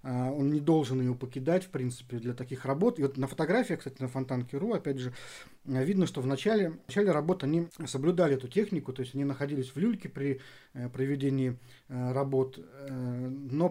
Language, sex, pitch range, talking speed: Russian, male, 130-150 Hz, 190 wpm